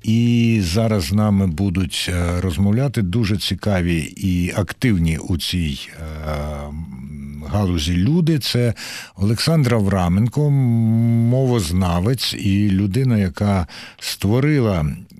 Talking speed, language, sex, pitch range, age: 85 wpm, Ukrainian, male, 95-120 Hz, 60-79